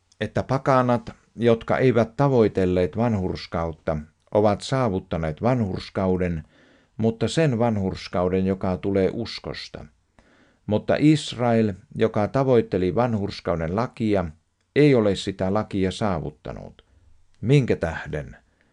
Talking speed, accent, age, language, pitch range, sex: 90 wpm, native, 50-69, Finnish, 90-120 Hz, male